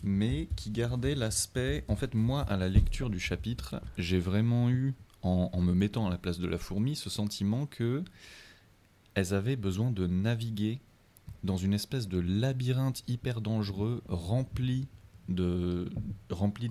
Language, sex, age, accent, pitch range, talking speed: French, male, 30-49, French, 90-115 Hz, 155 wpm